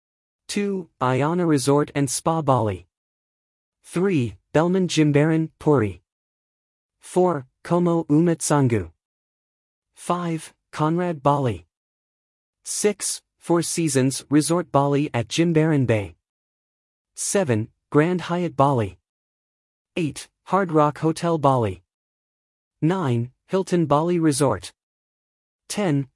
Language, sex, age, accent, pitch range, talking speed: English, male, 40-59, American, 105-165 Hz, 85 wpm